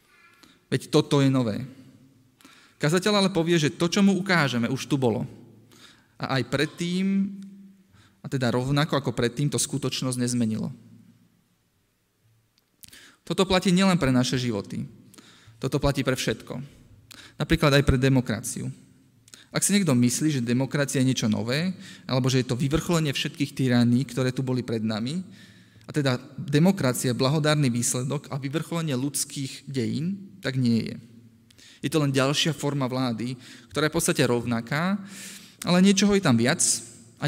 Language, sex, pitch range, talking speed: Slovak, male, 120-150 Hz, 145 wpm